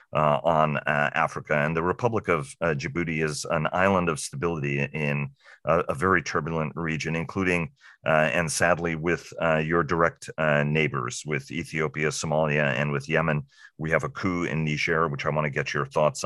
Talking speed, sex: 185 wpm, male